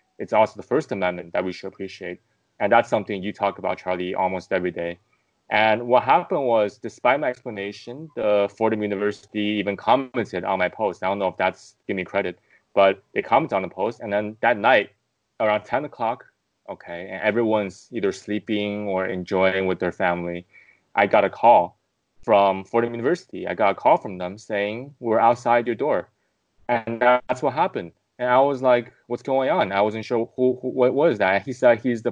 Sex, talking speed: male, 200 wpm